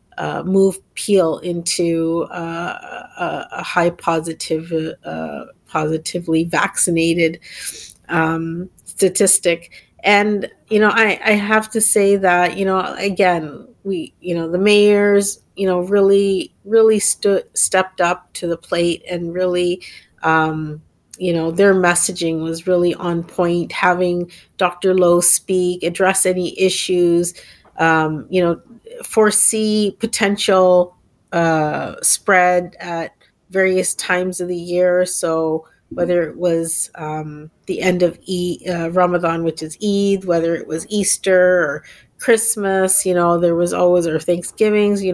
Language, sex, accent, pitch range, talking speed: English, female, American, 165-190 Hz, 130 wpm